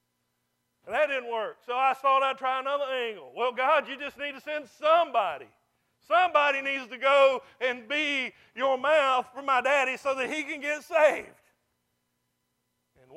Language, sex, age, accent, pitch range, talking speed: English, male, 50-69, American, 170-265 Hz, 170 wpm